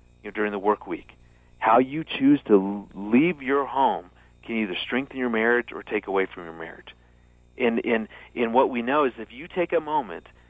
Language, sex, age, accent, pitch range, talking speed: English, male, 40-59, American, 90-135 Hz, 195 wpm